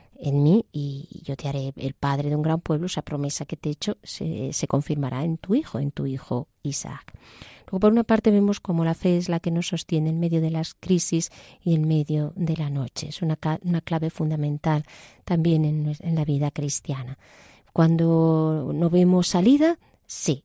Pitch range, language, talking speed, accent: 145-170 Hz, Spanish, 200 wpm, Spanish